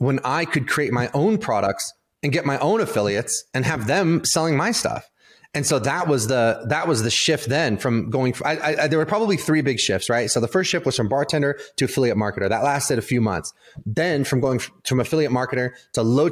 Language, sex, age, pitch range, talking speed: English, male, 30-49, 110-140 Hz, 240 wpm